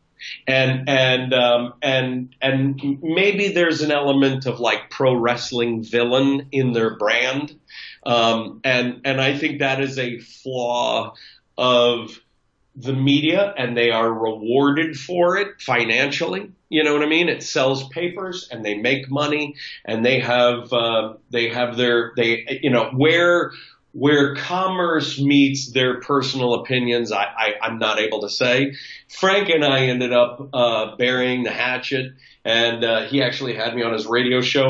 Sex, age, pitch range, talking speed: male, 40-59, 120-145 Hz, 155 wpm